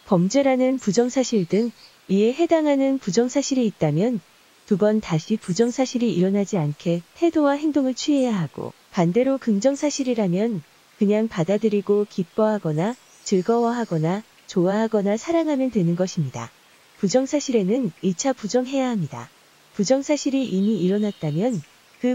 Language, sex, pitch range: Korean, female, 185-255 Hz